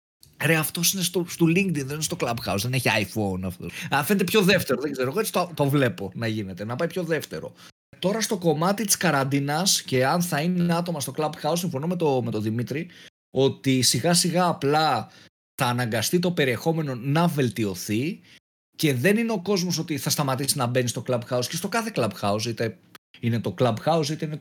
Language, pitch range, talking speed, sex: Greek, 115-175 Hz, 200 wpm, male